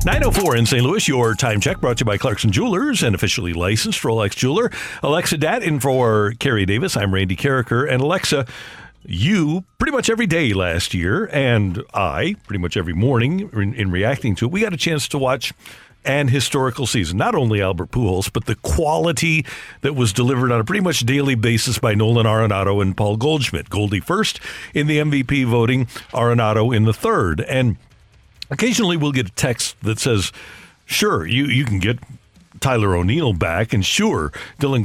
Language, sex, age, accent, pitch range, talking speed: English, male, 50-69, American, 110-140 Hz, 185 wpm